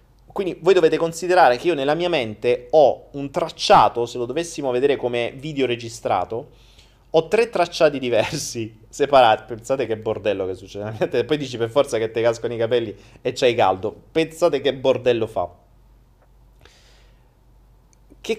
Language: Italian